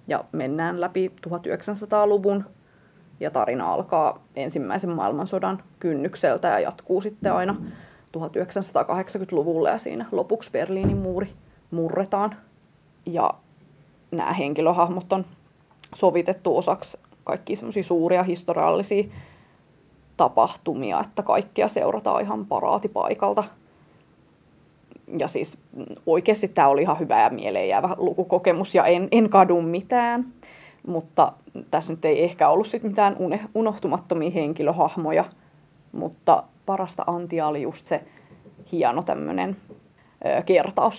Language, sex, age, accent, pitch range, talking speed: English, female, 20-39, Finnish, 170-205 Hz, 105 wpm